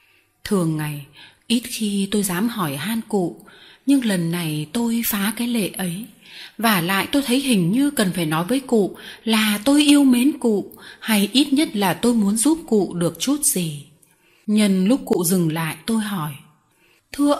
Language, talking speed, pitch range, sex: Vietnamese, 180 wpm, 175-230 Hz, female